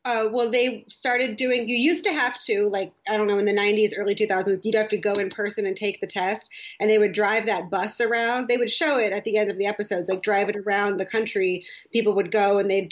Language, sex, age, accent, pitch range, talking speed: English, female, 30-49, American, 185-215 Hz, 265 wpm